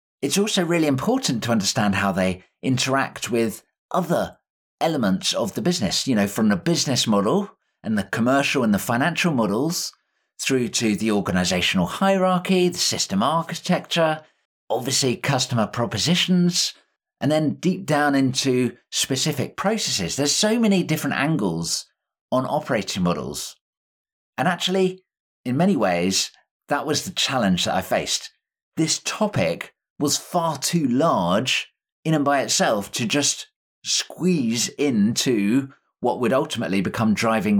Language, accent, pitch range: English, British, 120-180 Hz